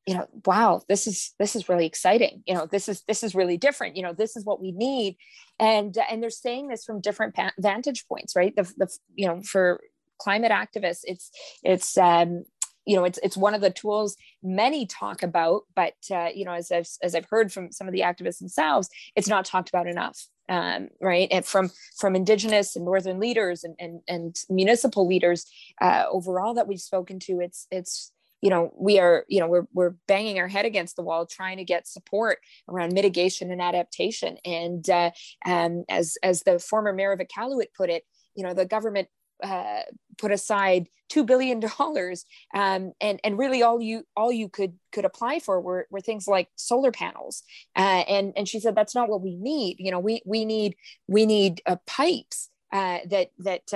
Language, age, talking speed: English, 20-39, 200 wpm